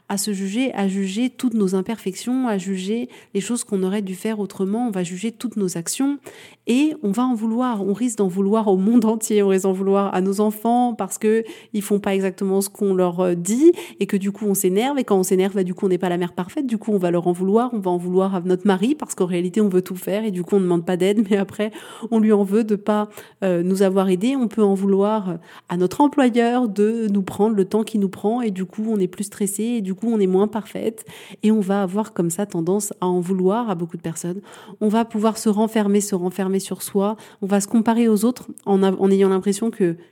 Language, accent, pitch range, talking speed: French, French, 190-235 Hz, 260 wpm